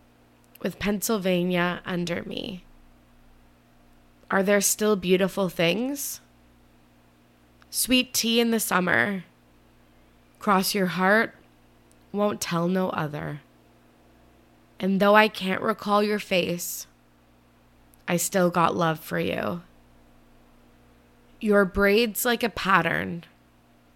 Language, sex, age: English, female, 20-39